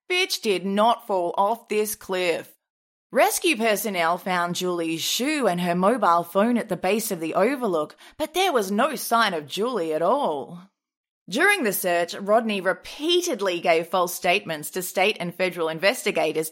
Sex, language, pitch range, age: female, English, 195-290 Hz, 30-49